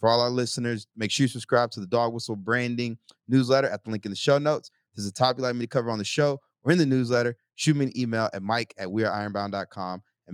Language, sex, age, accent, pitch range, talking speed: English, male, 30-49, American, 120-170 Hz, 275 wpm